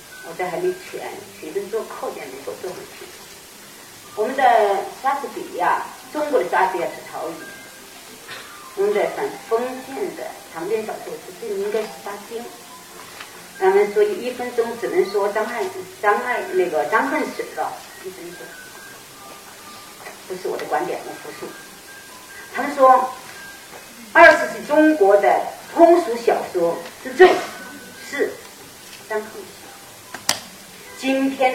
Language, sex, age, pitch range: Chinese, female, 40-59, 250-395 Hz